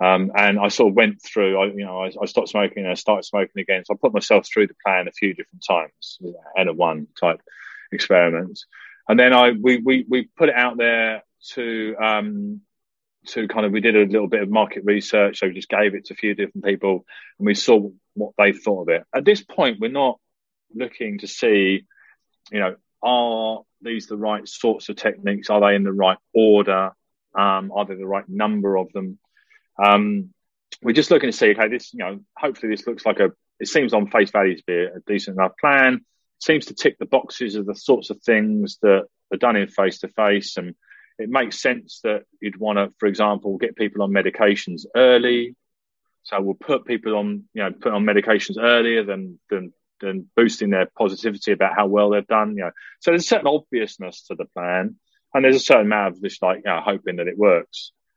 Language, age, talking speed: English, 30-49, 215 wpm